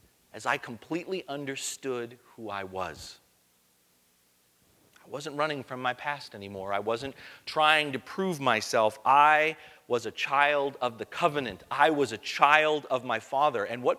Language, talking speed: English, 155 wpm